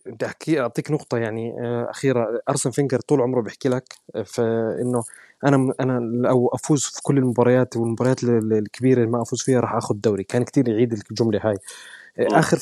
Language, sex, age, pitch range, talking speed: Arabic, male, 20-39, 115-135 Hz, 160 wpm